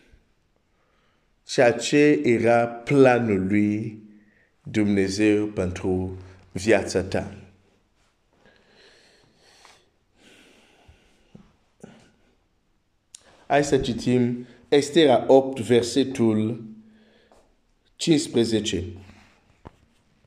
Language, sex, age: Romanian, male, 50-69